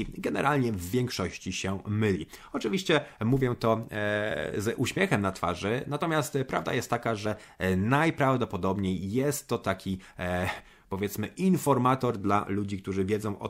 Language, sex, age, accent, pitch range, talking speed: Polish, male, 30-49, native, 95-125 Hz, 125 wpm